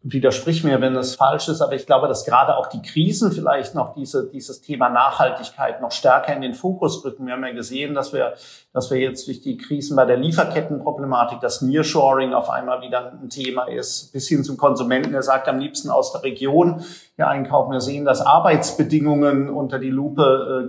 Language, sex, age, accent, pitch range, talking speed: German, male, 50-69, German, 130-155 Hz, 205 wpm